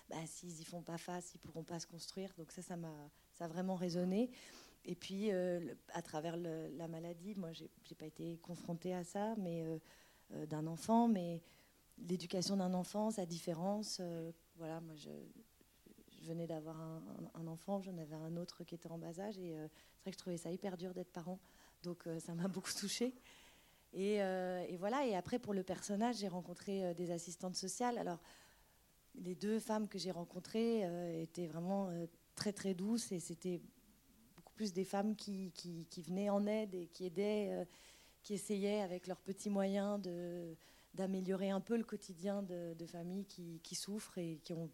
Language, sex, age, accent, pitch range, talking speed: French, female, 40-59, French, 170-200 Hz, 195 wpm